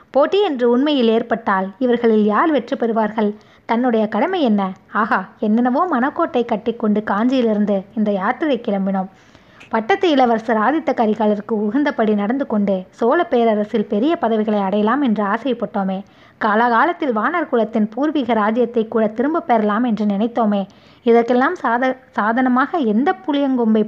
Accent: native